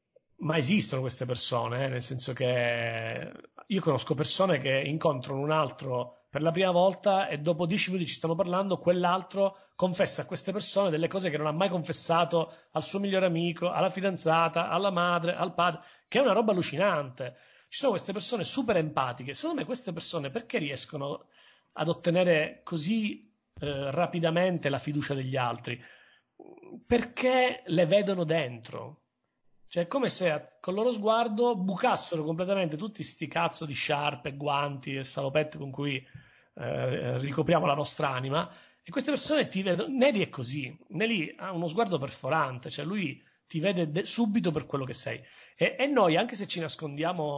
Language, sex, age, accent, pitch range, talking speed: Italian, male, 40-59, native, 140-195 Hz, 170 wpm